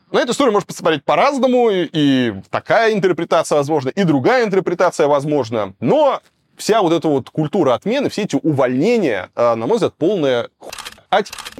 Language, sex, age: Russian, male, 20-39